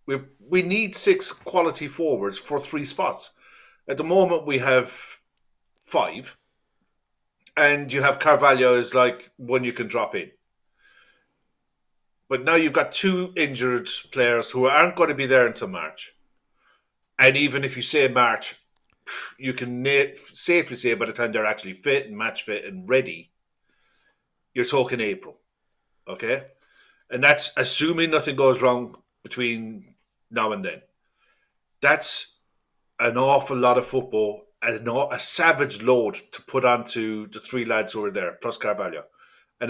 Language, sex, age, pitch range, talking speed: English, male, 50-69, 115-145 Hz, 150 wpm